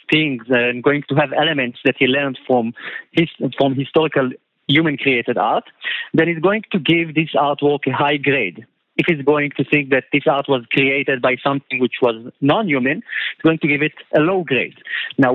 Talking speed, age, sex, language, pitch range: 190 wpm, 50-69, male, English, 135-175 Hz